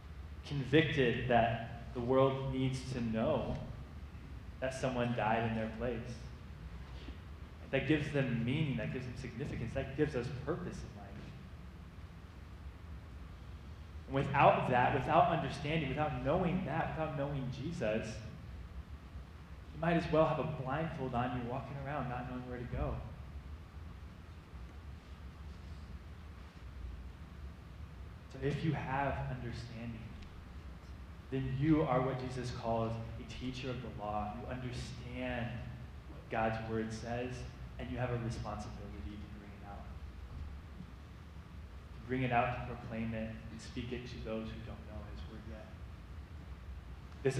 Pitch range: 80-130 Hz